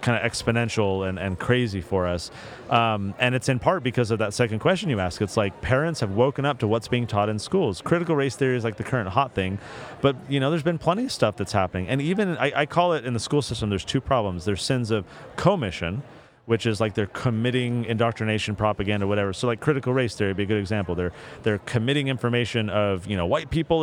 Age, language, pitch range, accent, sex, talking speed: 30-49, English, 115-145 Hz, American, male, 240 wpm